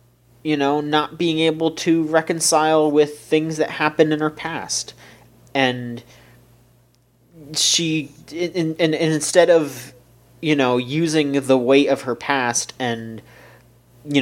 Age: 30-49